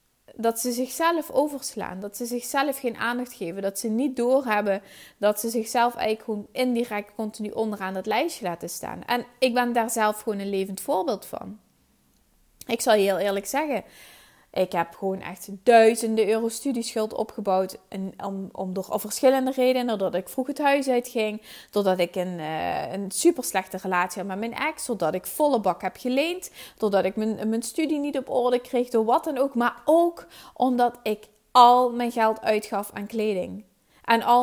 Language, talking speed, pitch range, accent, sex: Dutch, 180 wpm, 200-255 Hz, Dutch, female